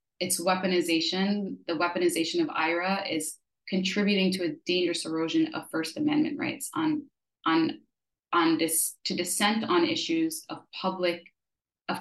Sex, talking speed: female, 135 wpm